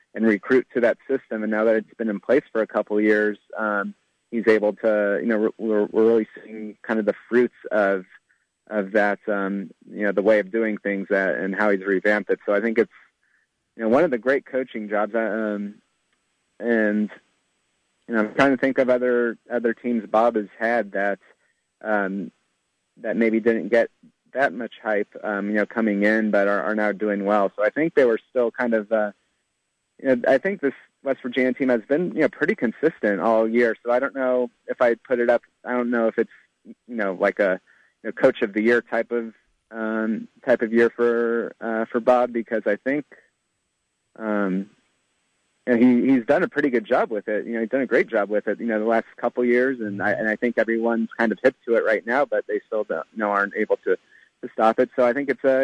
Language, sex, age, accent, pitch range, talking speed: English, male, 30-49, American, 105-125 Hz, 230 wpm